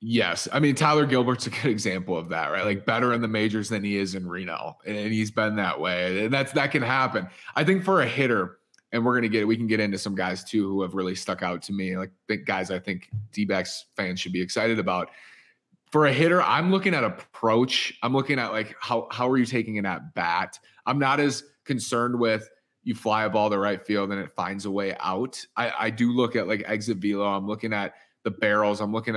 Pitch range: 100-125 Hz